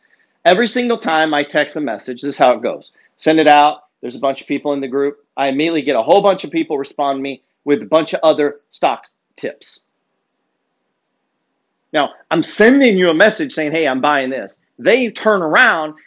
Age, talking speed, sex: 40-59, 205 wpm, male